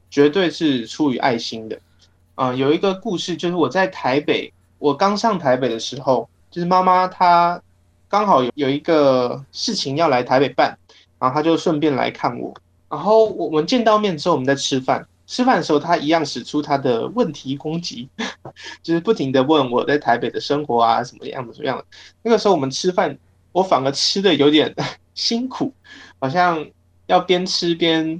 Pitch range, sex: 130-175 Hz, male